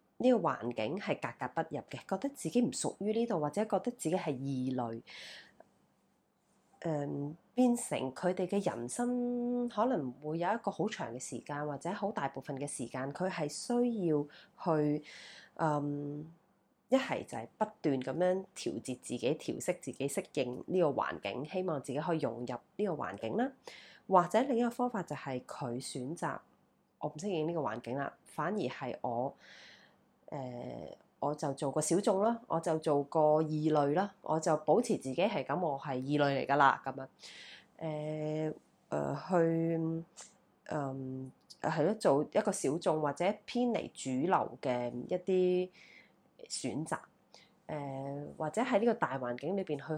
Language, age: Chinese, 20-39